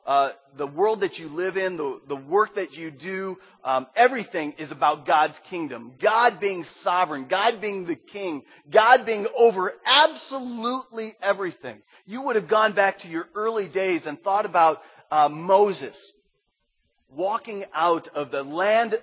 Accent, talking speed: American, 160 wpm